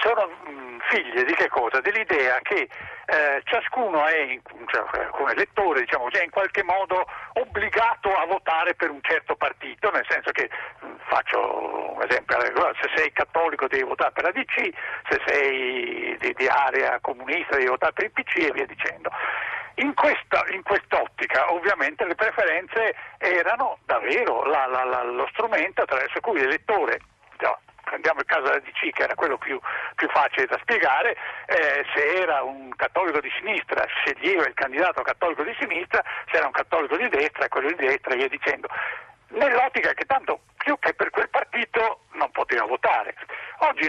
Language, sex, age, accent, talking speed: Italian, male, 60-79, native, 165 wpm